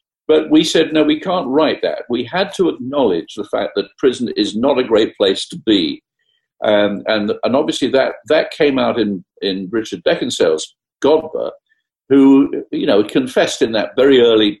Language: English